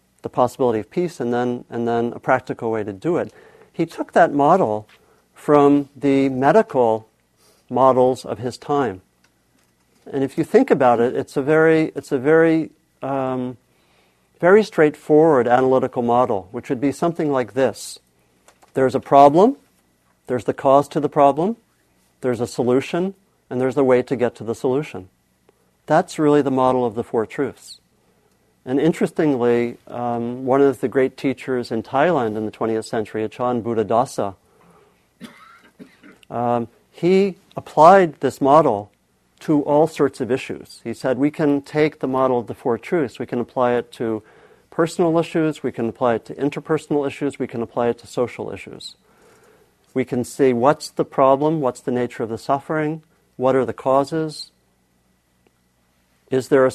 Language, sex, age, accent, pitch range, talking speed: English, male, 50-69, American, 115-145 Hz, 165 wpm